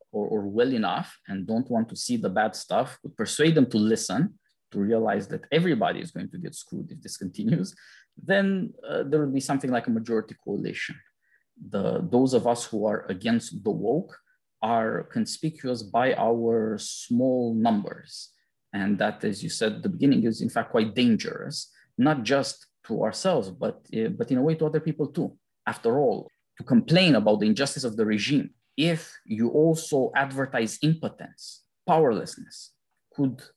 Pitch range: 115-160 Hz